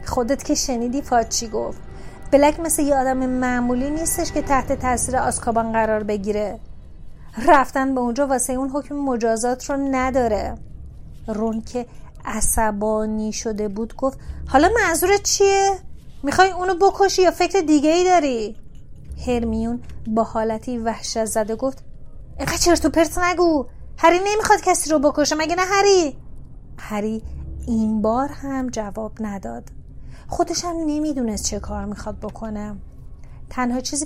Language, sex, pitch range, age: Persian, female, 225-300 Hz, 30-49